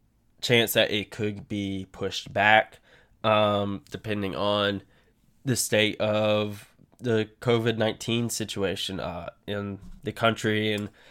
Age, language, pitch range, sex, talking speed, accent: 10-29, English, 100-115 Hz, male, 120 wpm, American